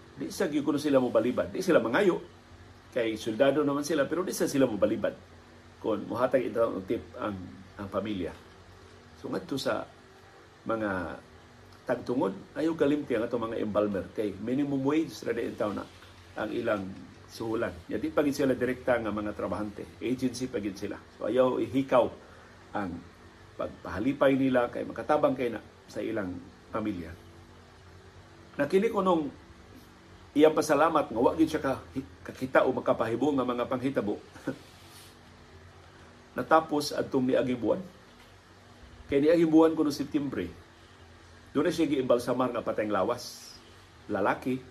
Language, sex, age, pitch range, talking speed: Filipino, male, 50-69, 90-145 Hz, 135 wpm